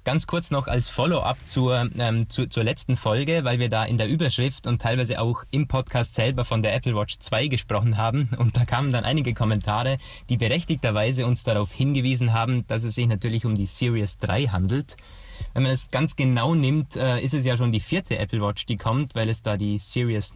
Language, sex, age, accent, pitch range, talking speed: German, male, 20-39, German, 110-135 Hz, 210 wpm